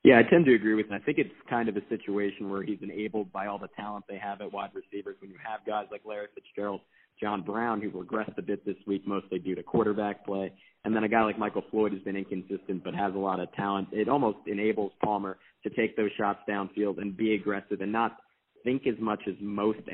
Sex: male